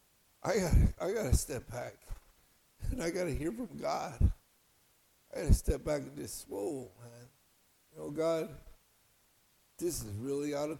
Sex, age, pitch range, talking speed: male, 60-79, 115-165 Hz, 165 wpm